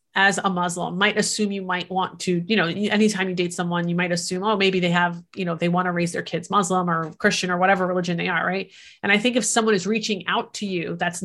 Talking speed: 260 wpm